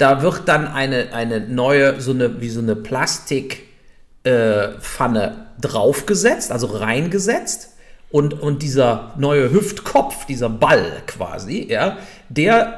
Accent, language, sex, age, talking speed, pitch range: German, German, male, 50-69, 120 wpm, 110-150 Hz